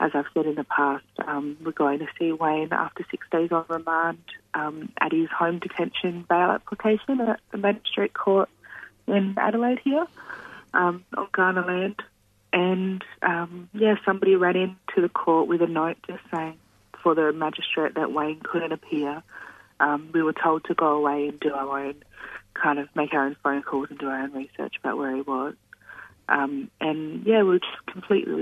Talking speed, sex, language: 190 wpm, female, English